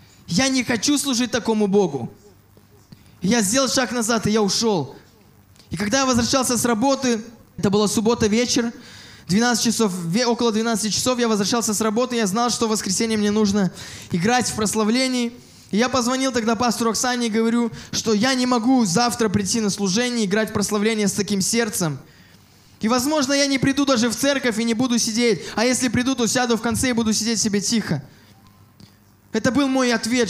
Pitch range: 215-250 Hz